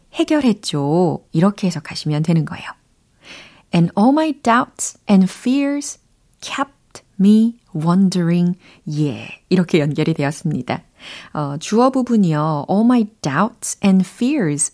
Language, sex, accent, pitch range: Korean, female, native, 160-240 Hz